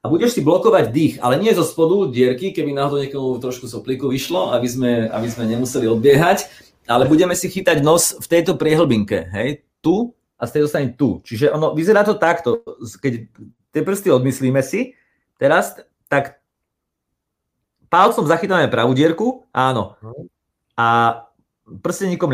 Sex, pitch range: male, 115-160 Hz